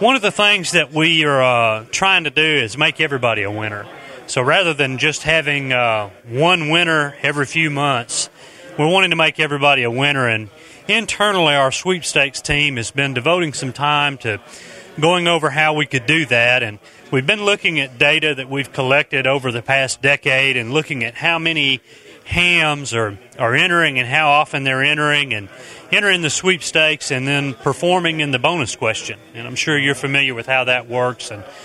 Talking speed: 190 wpm